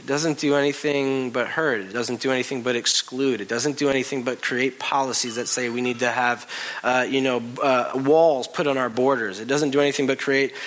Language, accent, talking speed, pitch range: English, American, 225 wpm, 130-185 Hz